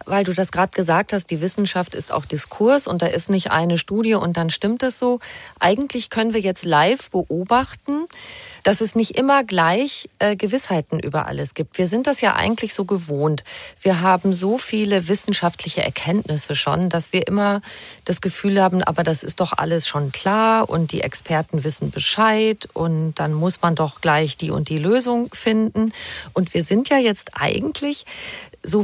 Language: German